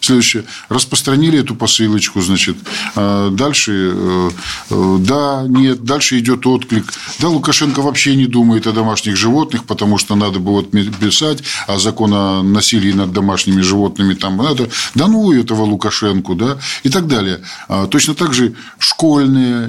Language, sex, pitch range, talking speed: Russian, male, 95-120 Hz, 145 wpm